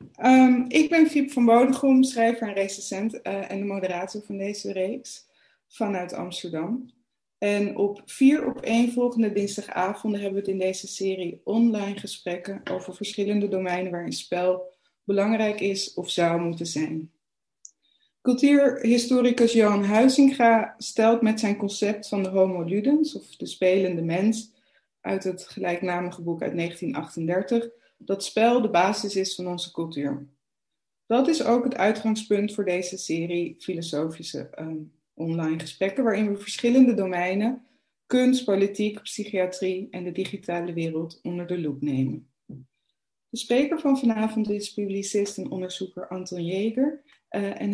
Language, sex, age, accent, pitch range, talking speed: Dutch, female, 20-39, Dutch, 180-230 Hz, 140 wpm